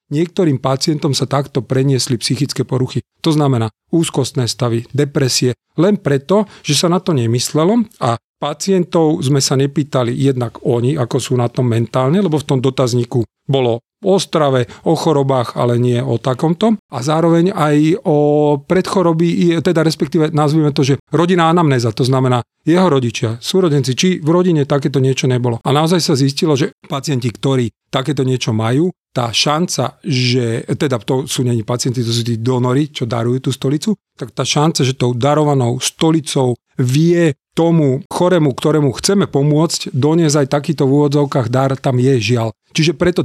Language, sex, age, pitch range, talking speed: Slovak, male, 40-59, 130-160 Hz, 160 wpm